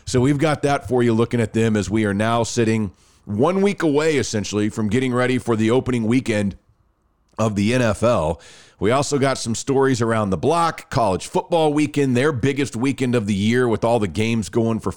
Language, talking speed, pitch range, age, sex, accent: English, 205 wpm, 105-145 Hz, 40-59, male, American